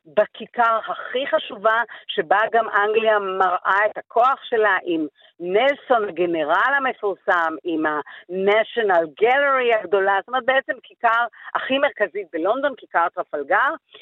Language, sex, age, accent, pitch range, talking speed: Hebrew, female, 50-69, native, 185-265 Hz, 115 wpm